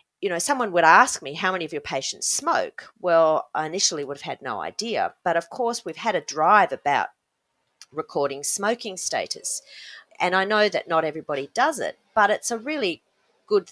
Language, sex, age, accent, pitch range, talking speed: English, female, 40-59, Australian, 145-190 Hz, 195 wpm